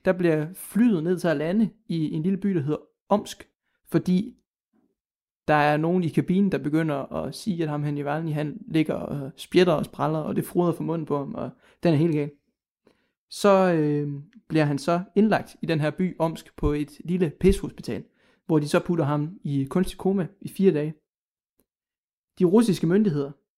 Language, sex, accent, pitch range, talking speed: Danish, male, native, 150-195 Hz, 195 wpm